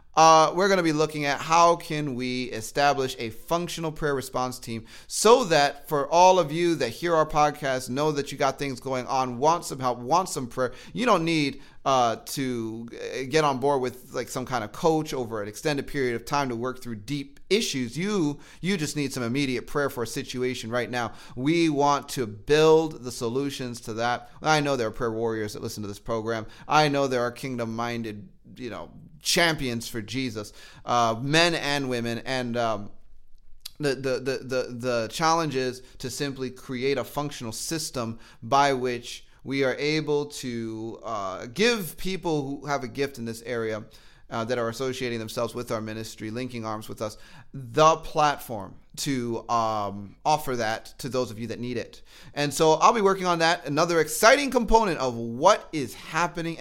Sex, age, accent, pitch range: male, 30-49, American, 120-160 Hz